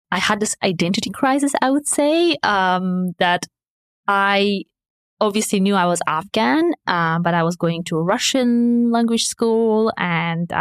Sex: female